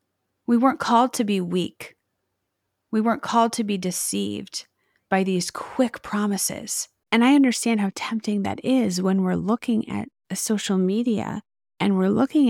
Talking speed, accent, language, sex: 155 wpm, American, English, female